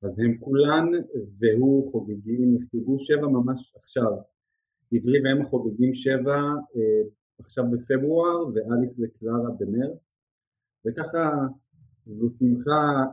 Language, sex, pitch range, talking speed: Hebrew, male, 110-135 Hz, 105 wpm